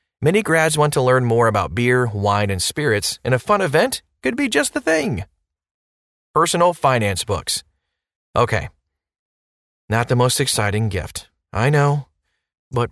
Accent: American